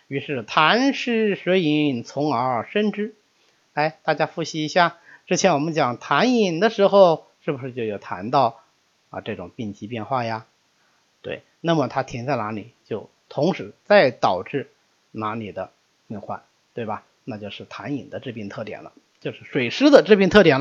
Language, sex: Chinese, male